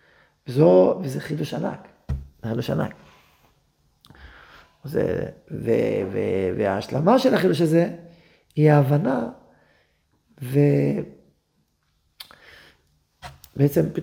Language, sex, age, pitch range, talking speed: Hebrew, male, 40-59, 145-195 Hz, 55 wpm